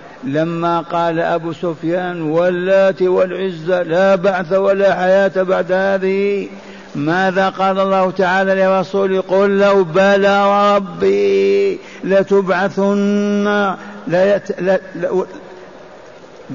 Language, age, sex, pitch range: Arabic, 50-69, male, 175-200 Hz